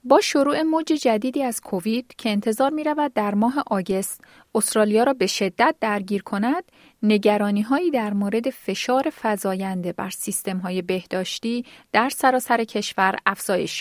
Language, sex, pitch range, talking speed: Persian, female, 195-255 Hz, 140 wpm